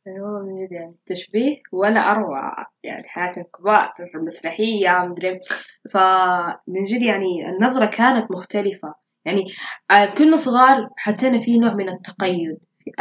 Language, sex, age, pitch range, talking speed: Arabic, female, 20-39, 180-210 Hz, 120 wpm